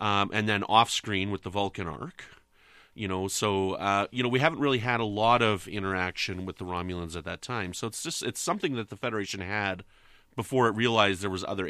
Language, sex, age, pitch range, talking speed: English, male, 30-49, 100-145 Hz, 225 wpm